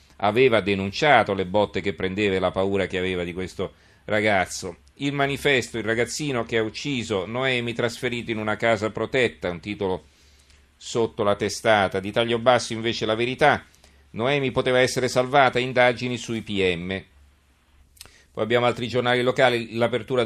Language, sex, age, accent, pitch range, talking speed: Italian, male, 40-59, native, 95-120 Hz, 150 wpm